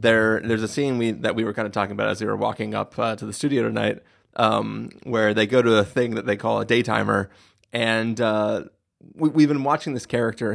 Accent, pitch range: American, 105-125 Hz